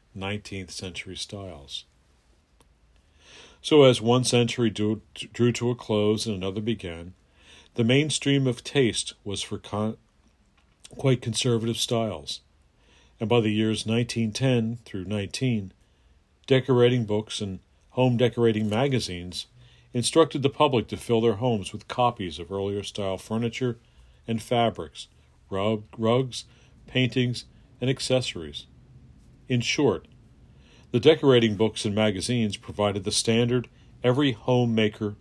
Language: English